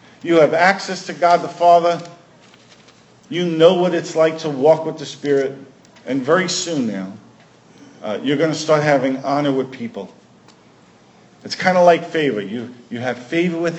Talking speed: 175 wpm